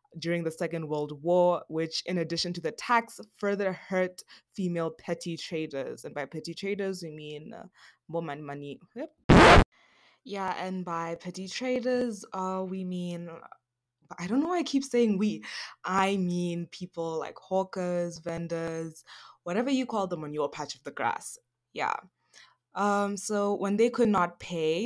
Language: English